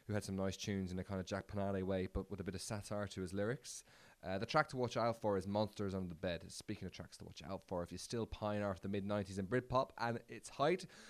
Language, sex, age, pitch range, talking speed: English, male, 20-39, 90-115 Hz, 280 wpm